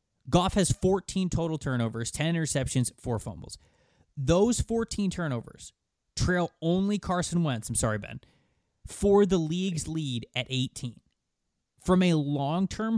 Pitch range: 120-175 Hz